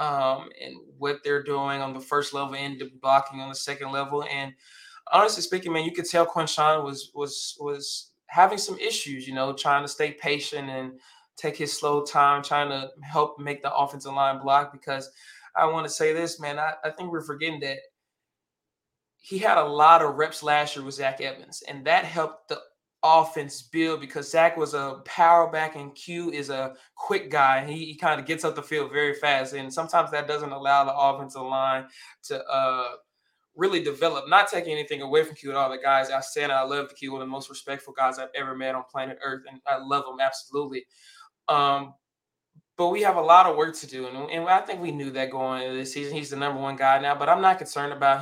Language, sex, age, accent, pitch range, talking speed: English, male, 20-39, American, 135-150 Hz, 220 wpm